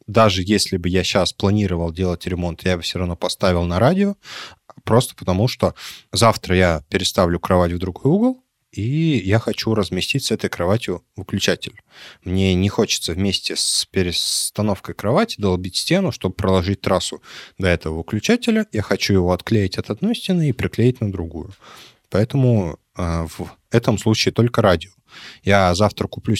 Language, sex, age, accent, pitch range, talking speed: Russian, male, 20-39, native, 90-115 Hz, 155 wpm